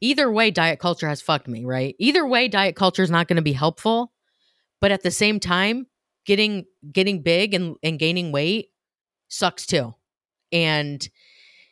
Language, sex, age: English, female, 30-49